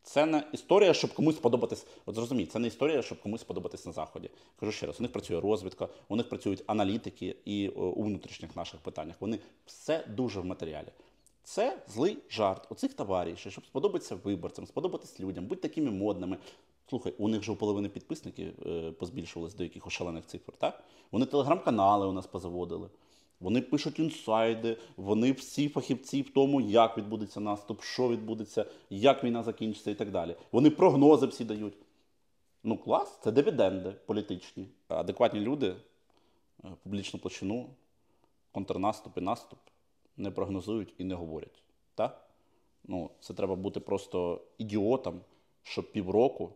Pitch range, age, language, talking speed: 95-135 Hz, 30-49, Ukrainian, 150 wpm